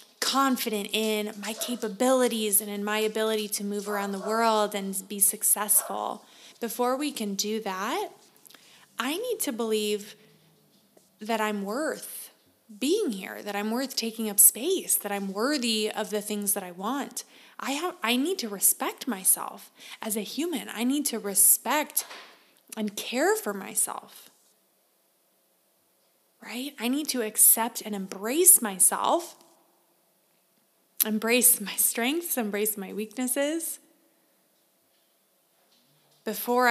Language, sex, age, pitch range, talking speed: English, female, 20-39, 210-255 Hz, 130 wpm